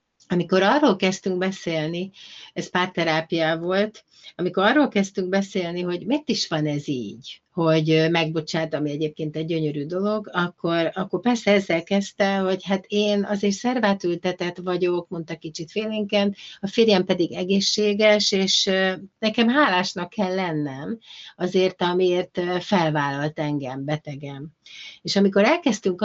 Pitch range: 165-205 Hz